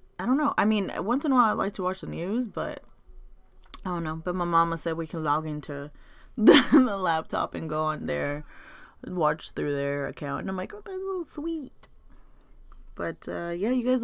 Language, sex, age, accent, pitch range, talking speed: English, female, 20-39, American, 150-220 Hz, 220 wpm